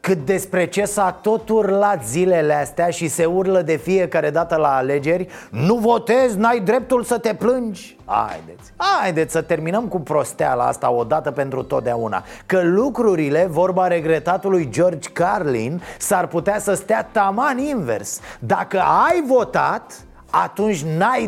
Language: Romanian